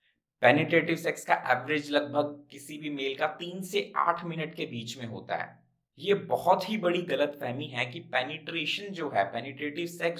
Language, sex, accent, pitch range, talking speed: Hindi, male, native, 140-190 Hz, 175 wpm